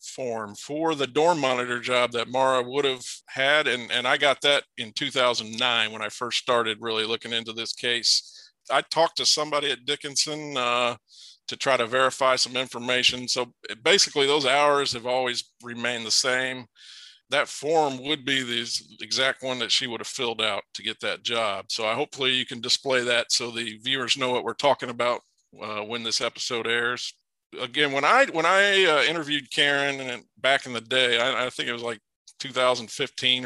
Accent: American